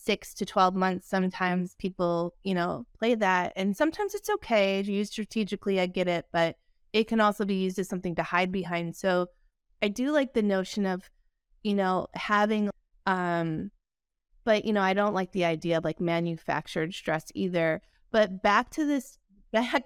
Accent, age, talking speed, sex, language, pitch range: American, 30-49, 180 wpm, female, English, 185-235 Hz